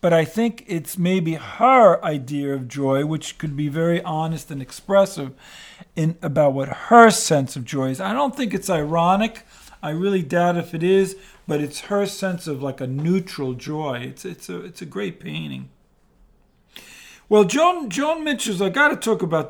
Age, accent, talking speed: 50-69, American, 185 wpm